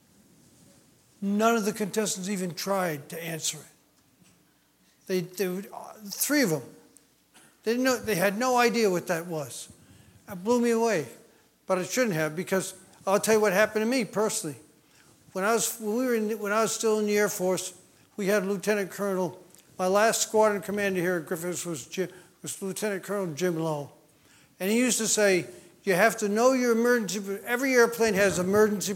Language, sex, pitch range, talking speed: English, male, 175-215 Hz, 185 wpm